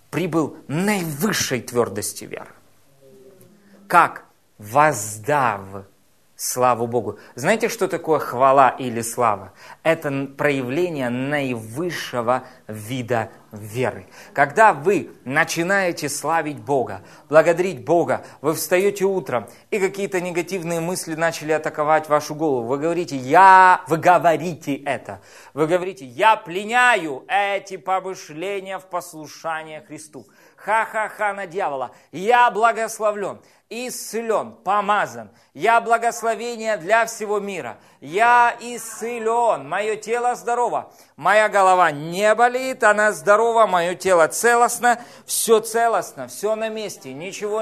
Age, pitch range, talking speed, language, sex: 20-39, 150-220 Hz, 105 wpm, Russian, male